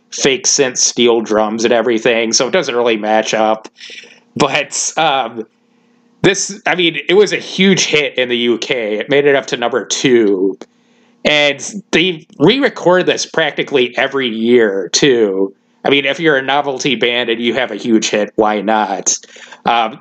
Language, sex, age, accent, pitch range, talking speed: English, male, 30-49, American, 120-175 Hz, 170 wpm